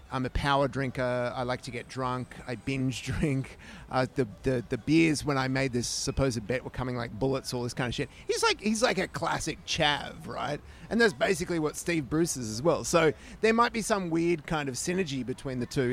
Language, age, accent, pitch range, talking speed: English, 30-49, Australian, 125-160 Hz, 230 wpm